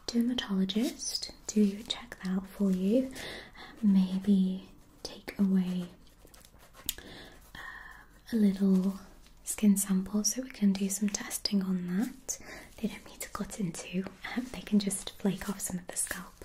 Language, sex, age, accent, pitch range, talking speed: English, female, 20-39, British, 190-220 Hz, 140 wpm